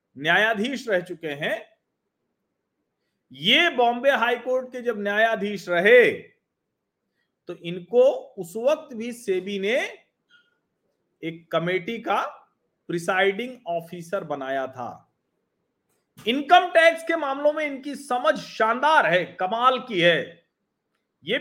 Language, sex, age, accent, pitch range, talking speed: Hindi, male, 40-59, native, 165-255 Hz, 110 wpm